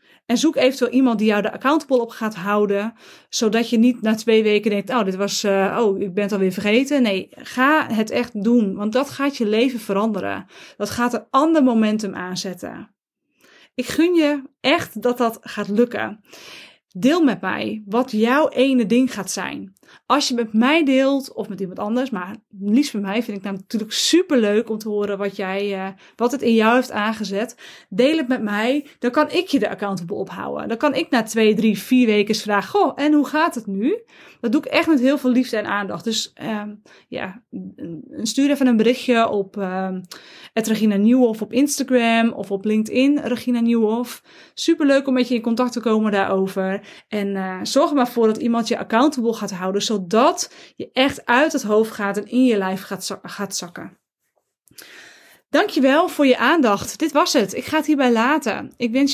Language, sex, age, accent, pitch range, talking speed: Dutch, female, 20-39, Dutch, 210-265 Hz, 195 wpm